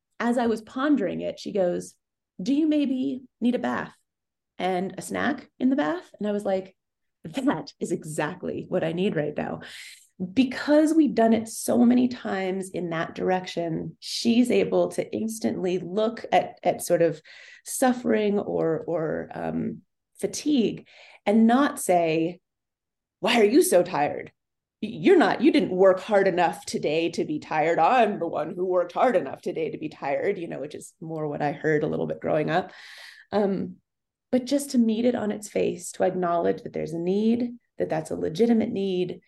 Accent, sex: American, female